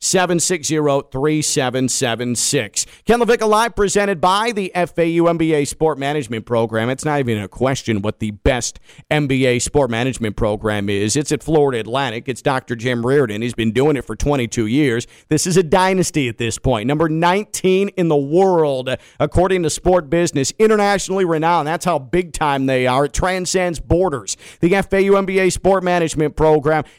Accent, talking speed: American, 175 wpm